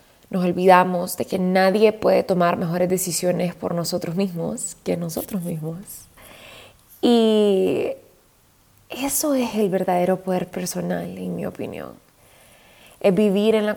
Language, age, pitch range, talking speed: Spanish, 20-39, 175-210 Hz, 125 wpm